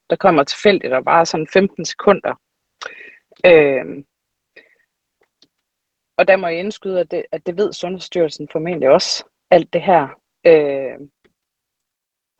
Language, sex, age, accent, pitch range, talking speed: Danish, female, 30-49, native, 165-220 Hz, 125 wpm